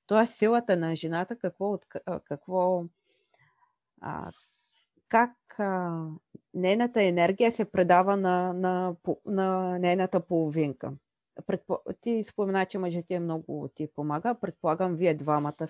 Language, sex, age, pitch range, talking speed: Bulgarian, female, 30-49, 160-200 Hz, 95 wpm